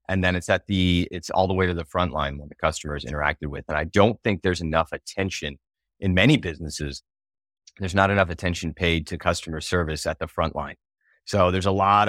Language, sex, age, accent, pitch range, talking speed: English, male, 30-49, American, 80-95 Hz, 225 wpm